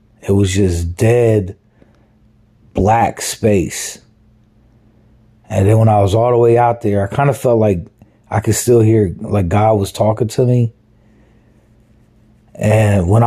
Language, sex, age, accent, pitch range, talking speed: English, male, 40-59, American, 105-120 Hz, 150 wpm